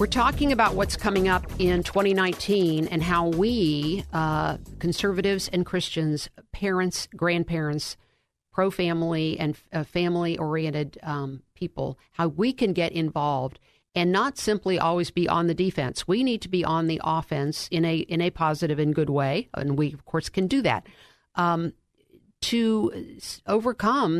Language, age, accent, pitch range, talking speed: English, 50-69, American, 150-180 Hz, 155 wpm